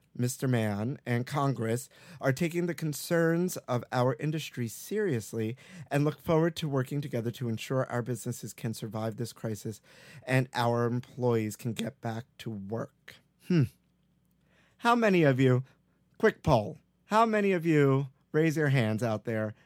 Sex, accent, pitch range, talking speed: male, American, 120-160 Hz, 155 wpm